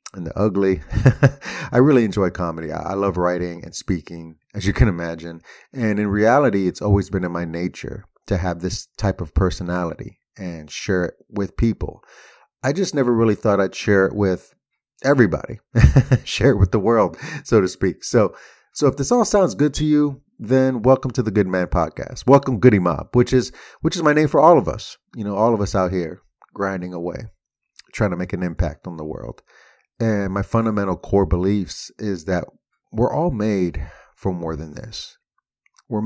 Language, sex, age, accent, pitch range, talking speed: English, male, 30-49, American, 90-120 Hz, 190 wpm